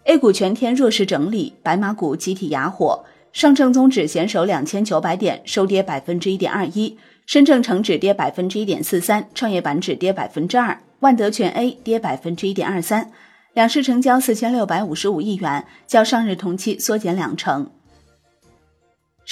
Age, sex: 30-49, female